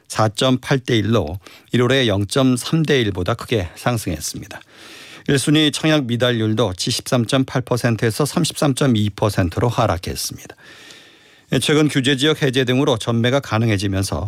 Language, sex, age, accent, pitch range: Korean, male, 40-59, native, 105-135 Hz